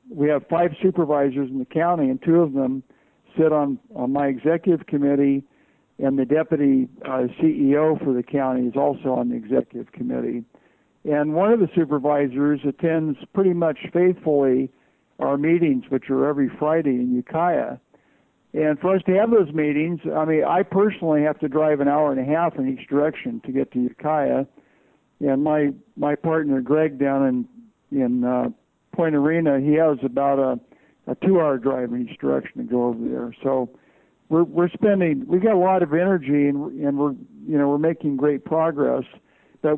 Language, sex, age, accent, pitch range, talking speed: English, male, 60-79, American, 135-165 Hz, 180 wpm